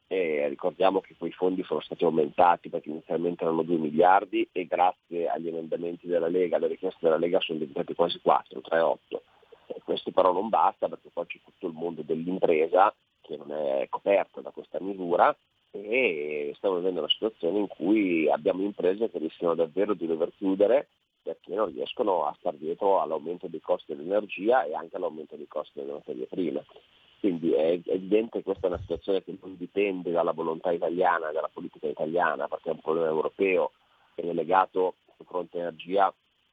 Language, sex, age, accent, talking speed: Italian, male, 40-59, native, 180 wpm